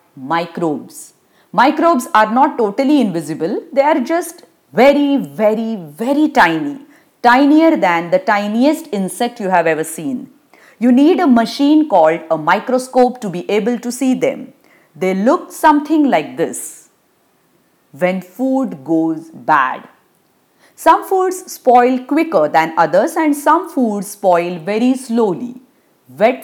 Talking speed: 130 wpm